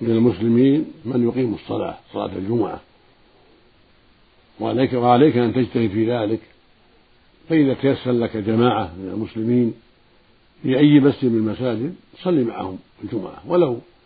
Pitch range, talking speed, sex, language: 110-125 Hz, 120 wpm, male, Arabic